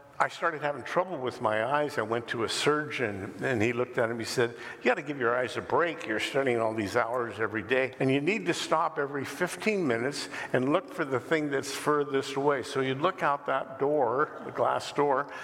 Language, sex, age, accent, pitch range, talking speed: English, male, 50-69, American, 125-165 Hz, 225 wpm